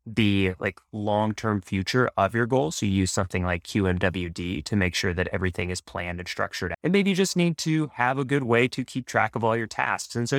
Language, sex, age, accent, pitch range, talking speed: English, male, 20-39, American, 100-125 Hz, 235 wpm